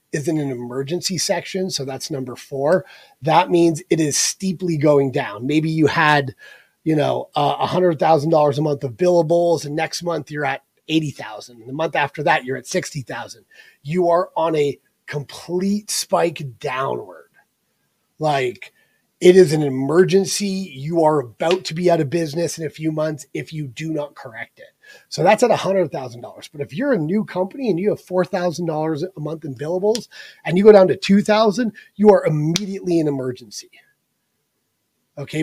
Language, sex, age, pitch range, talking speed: English, male, 30-49, 145-185 Hz, 170 wpm